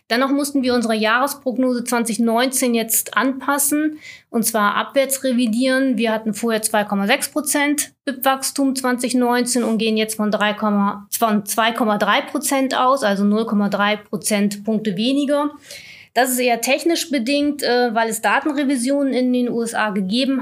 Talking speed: 125 wpm